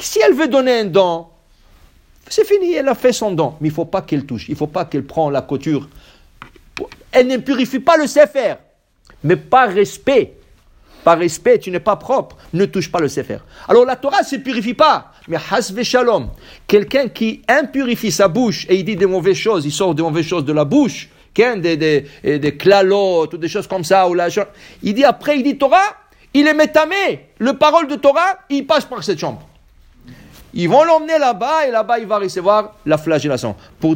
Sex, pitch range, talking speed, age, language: male, 160-250 Hz, 210 wpm, 50-69, English